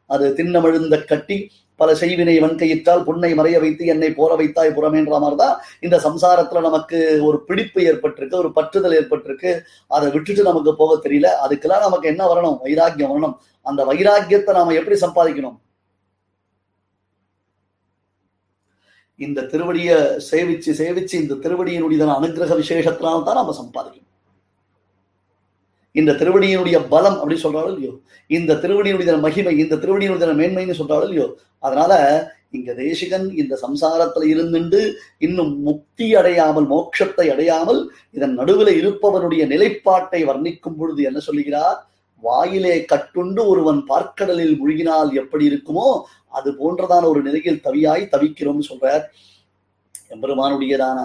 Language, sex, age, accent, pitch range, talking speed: Tamil, male, 30-49, native, 145-175 Hz, 115 wpm